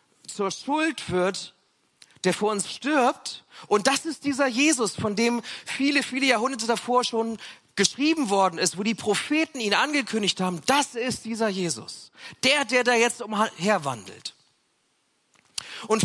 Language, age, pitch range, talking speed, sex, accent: German, 40-59, 185-255 Hz, 140 wpm, male, German